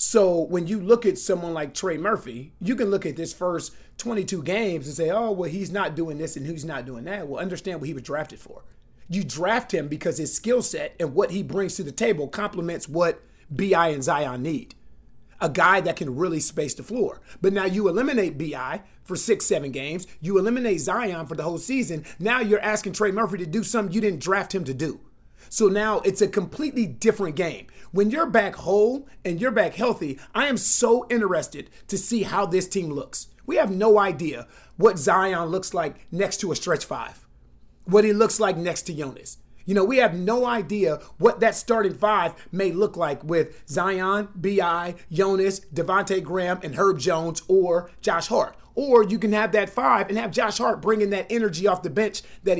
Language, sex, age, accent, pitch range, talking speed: English, male, 30-49, American, 170-215 Hz, 210 wpm